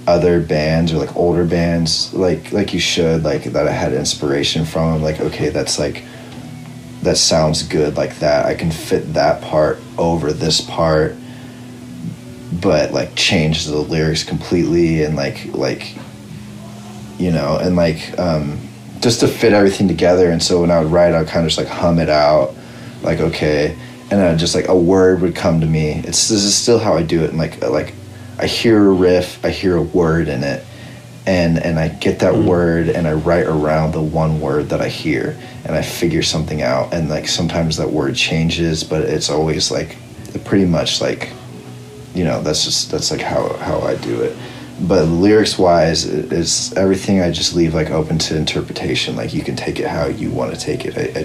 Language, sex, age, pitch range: English, male, 30-49, 80-90 Hz